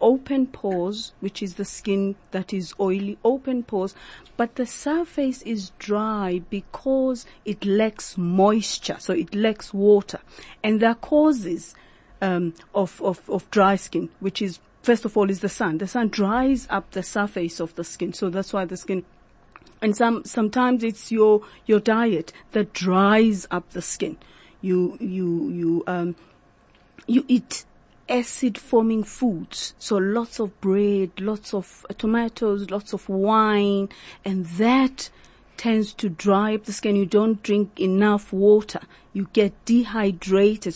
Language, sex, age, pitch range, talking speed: English, female, 40-59, 190-225 Hz, 150 wpm